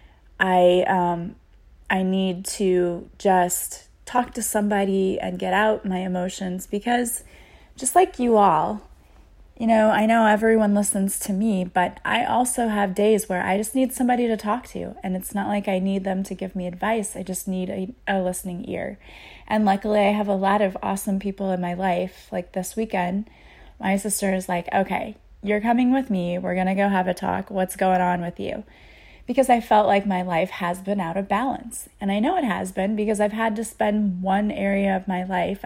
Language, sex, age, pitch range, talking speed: English, female, 20-39, 185-215 Hz, 205 wpm